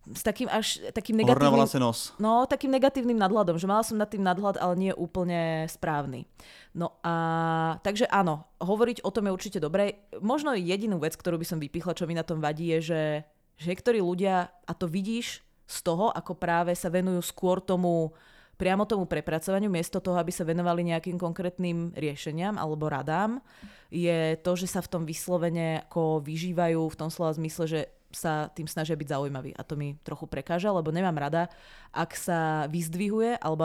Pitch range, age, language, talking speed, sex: 160-200 Hz, 20-39, Czech, 180 wpm, female